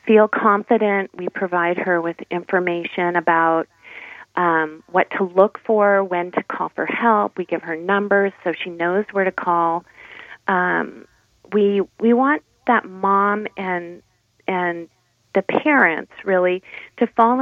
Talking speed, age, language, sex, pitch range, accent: 140 wpm, 40-59, English, female, 180-215 Hz, American